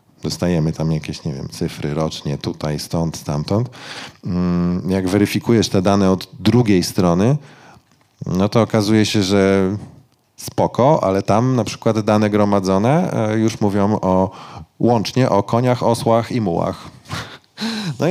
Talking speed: 130 wpm